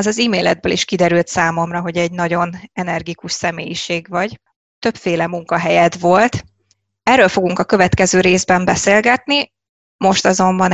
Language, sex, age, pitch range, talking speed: Hungarian, female, 20-39, 180-220 Hz, 130 wpm